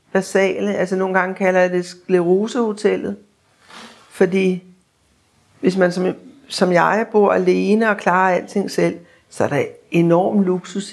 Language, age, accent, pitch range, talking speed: Danish, 60-79, native, 180-220 Hz, 135 wpm